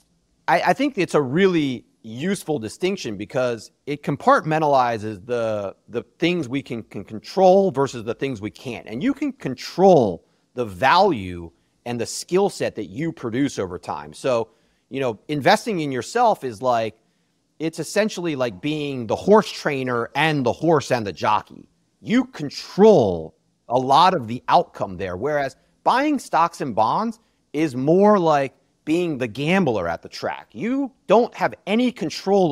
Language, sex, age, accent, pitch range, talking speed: English, male, 30-49, American, 115-175 Hz, 160 wpm